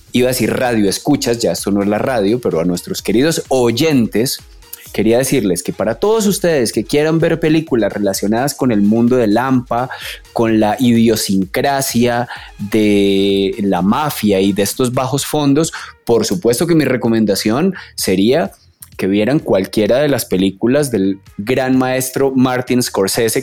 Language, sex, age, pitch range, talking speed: Spanish, male, 30-49, 105-145 Hz, 155 wpm